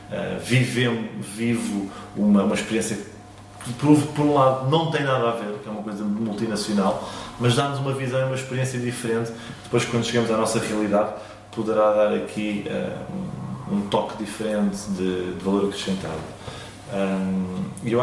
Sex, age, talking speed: male, 20-39, 165 wpm